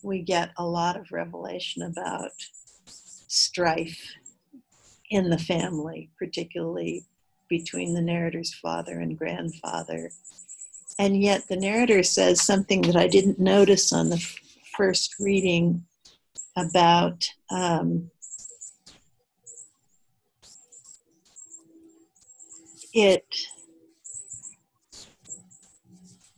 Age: 60-79